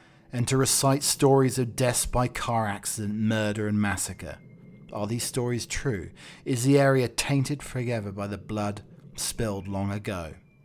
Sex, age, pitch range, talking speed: male, 40-59, 100-125 Hz, 150 wpm